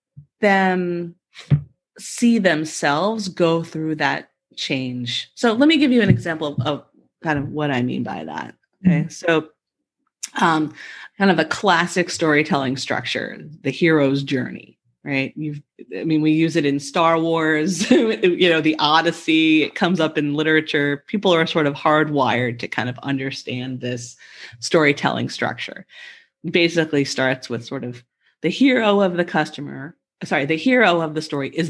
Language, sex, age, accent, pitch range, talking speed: English, female, 30-49, American, 140-175 Hz, 160 wpm